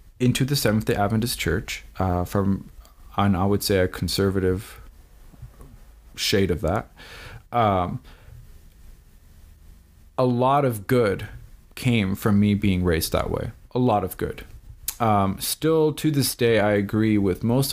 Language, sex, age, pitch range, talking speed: English, male, 20-39, 90-120 Hz, 135 wpm